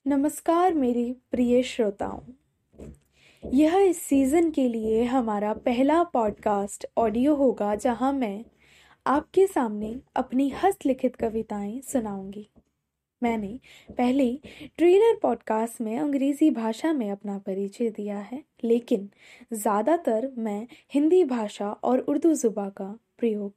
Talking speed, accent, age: 110 wpm, native, 10-29